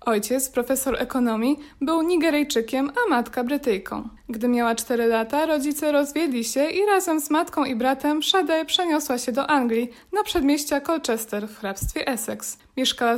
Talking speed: 150 wpm